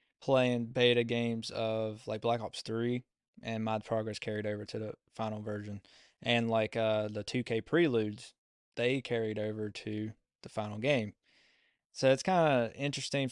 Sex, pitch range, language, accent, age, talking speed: male, 110-130 Hz, English, American, 20-39, 160 wpm